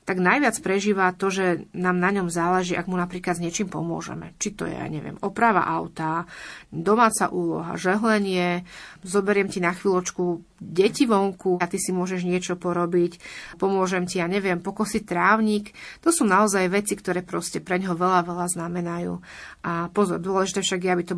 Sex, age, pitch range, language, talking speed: female, 30-49, 175-195 Hz, Slovak, 175 wpm